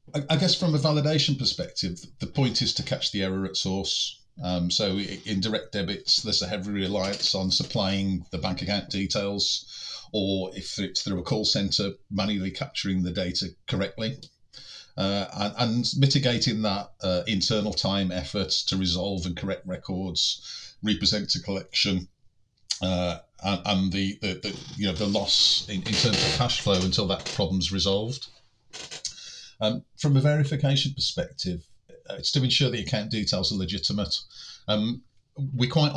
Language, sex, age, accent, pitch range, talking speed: English, male, 40-59, British, 95-125 Hz, 160 wpm